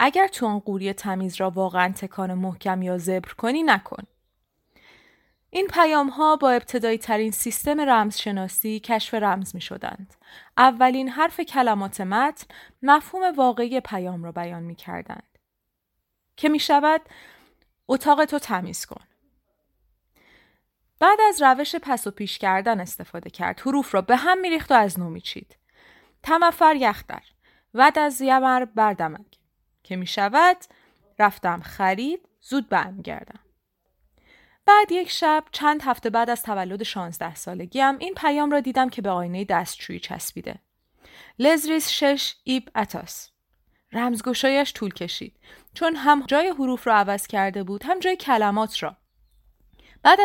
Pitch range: 200-295 Hz